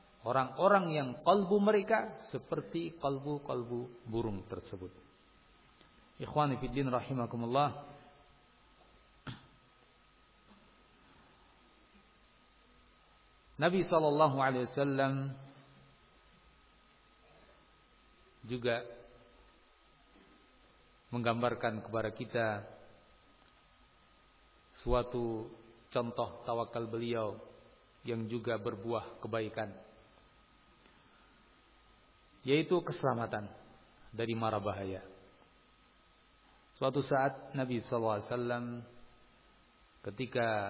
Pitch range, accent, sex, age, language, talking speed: 110-135 Hz, native, male, 50-69, Indonesian, 55 wpm